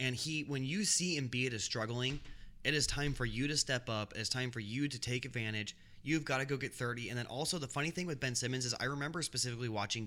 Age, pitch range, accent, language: 20-39, 105-130 Hz, American, English